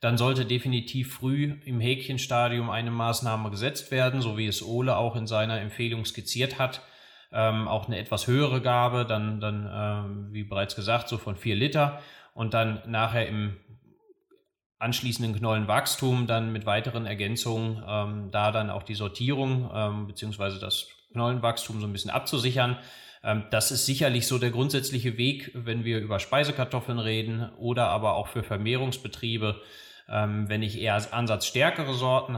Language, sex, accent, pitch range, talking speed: German, male, German, 105-125 Hz, 160 wpm